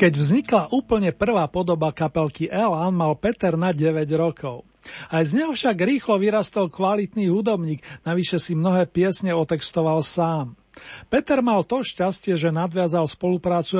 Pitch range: 165-195 Hz